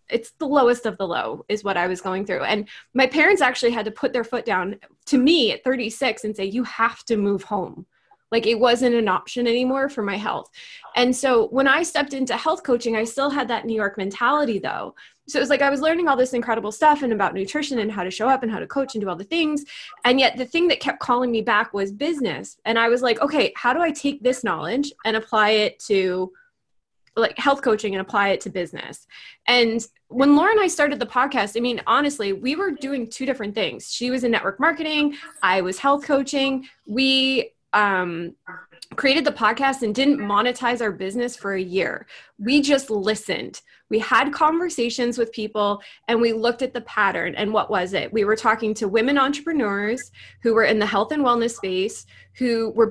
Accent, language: American, English